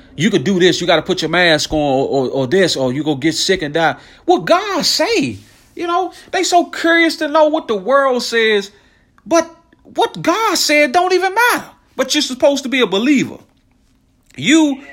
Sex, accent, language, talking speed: male, American, English, 205 wpm